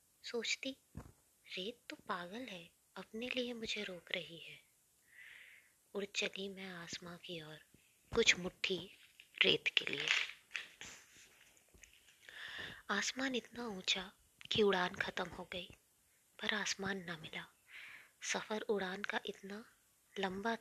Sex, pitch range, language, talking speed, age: female, 175-215 Hz, Hindi, 115 wpm, 20-39